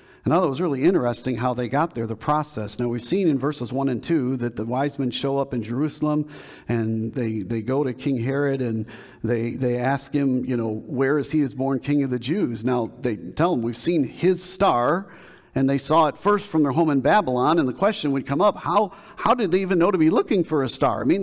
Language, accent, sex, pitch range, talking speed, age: English, American, male, 130-165 Hz, 250 wpm, 50-69